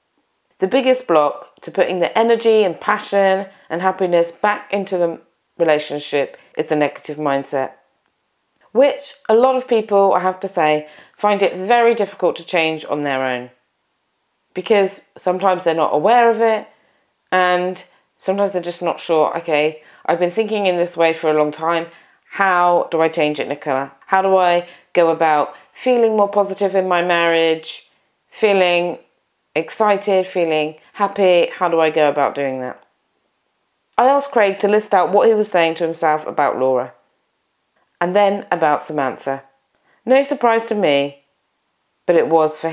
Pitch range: 155-205 Hz